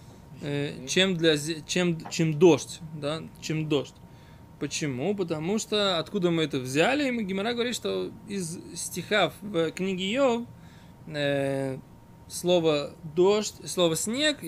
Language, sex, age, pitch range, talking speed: Russian, male, 20-39, 155-200 Hz, 115 wpm